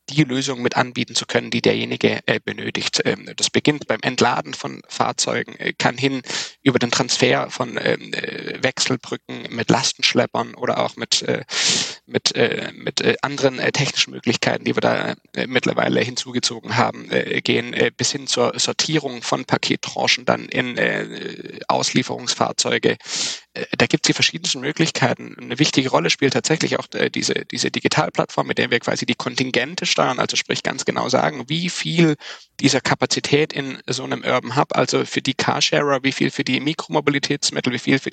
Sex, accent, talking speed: male, German, 170 wpm